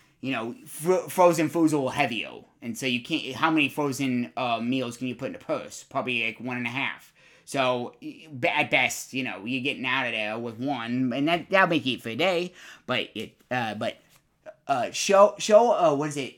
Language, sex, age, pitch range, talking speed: English, male, 30-49, 125-175 Hz, 225 wpm